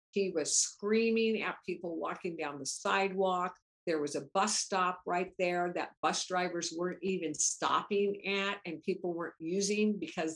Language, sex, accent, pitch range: English, female, American, 175-215 Hz